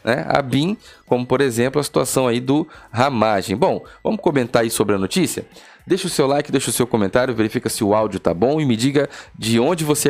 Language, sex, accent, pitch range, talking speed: Portuguese, male, Brazilian, 110-140 Hz, 225 wpm